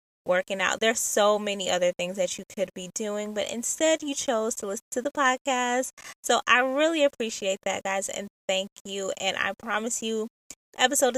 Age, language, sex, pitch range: 20-39, English, female, 190-230 Hz